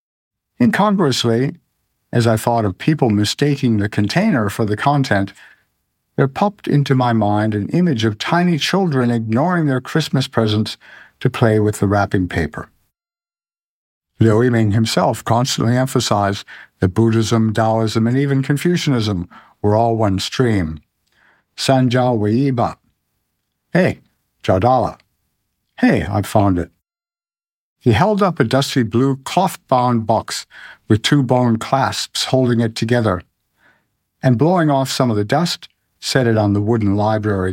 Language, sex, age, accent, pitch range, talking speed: English, male, 60-79, American, 110-140 Hz, 135 wpm